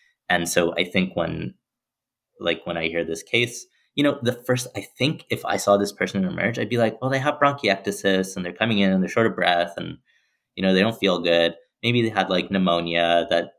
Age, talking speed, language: 30-49, 230 wpm, English